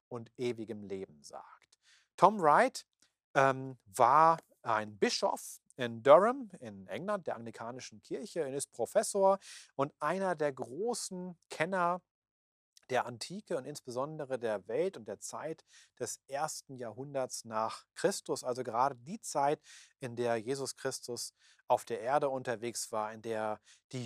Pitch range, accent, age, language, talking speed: 120-145 Hz, German, 40-59, German, 135 wpm